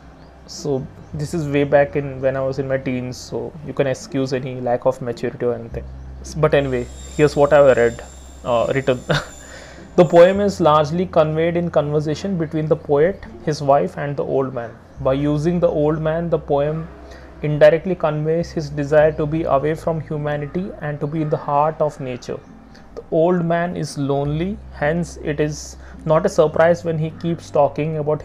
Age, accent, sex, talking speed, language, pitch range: 30-49, Indian, male, 185 wpm, English, 130-155 Hz